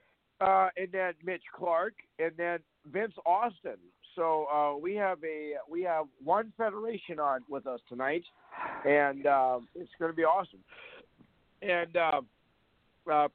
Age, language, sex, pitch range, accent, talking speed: 50-69, English, male, 130-160 Hz, American, 145 wpm